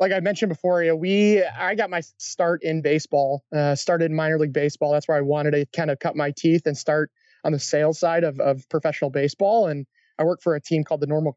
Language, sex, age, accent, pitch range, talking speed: English, male, 30-49, American, 150-170 Hz, 255 wpm